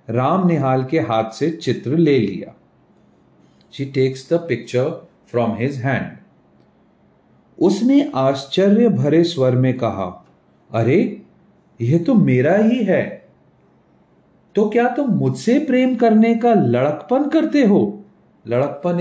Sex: male